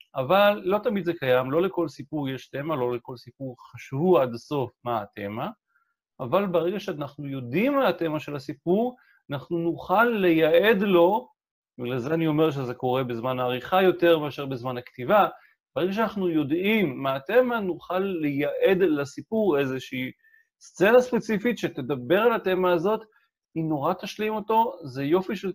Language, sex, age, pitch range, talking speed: Hebrew, male, 40-59, 145-210 Hz, 150 wpm